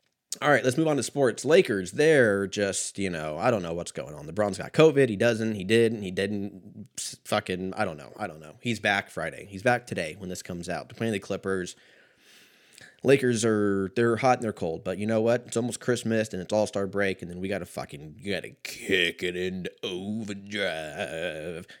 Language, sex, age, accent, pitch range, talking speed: English, male, 20-39, American, 95-120 Hz, 210 wpm